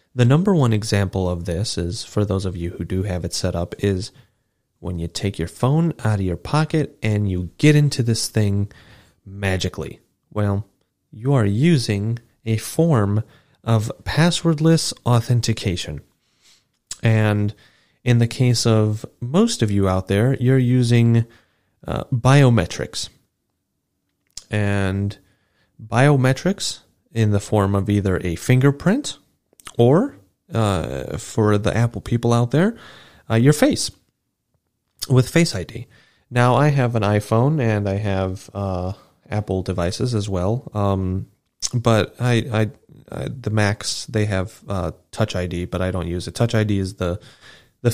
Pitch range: 95-125 Hz